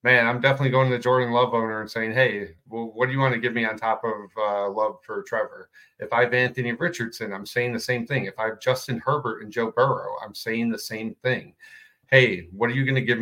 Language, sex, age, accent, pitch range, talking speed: English, male, 40-59, American, 110-130 Hz, 250 wpm